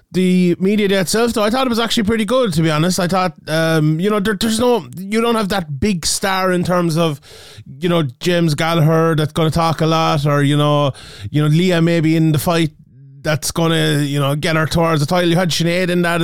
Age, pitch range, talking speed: 20-39, 155-185 Hz, 245 wpm